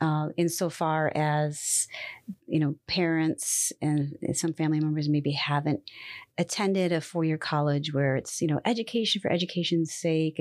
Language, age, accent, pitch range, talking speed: English, 40-59, American, 150-170 Hz, 145 wpm